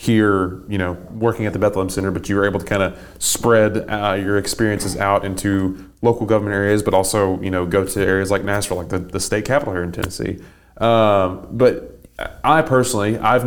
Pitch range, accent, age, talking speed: 95-110 Hz, American, 30-49, 205 wpm